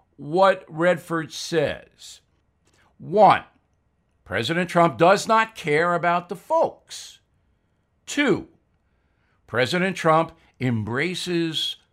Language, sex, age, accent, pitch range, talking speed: English, male, 60-79, American, 110-190 Hz, 80 wpm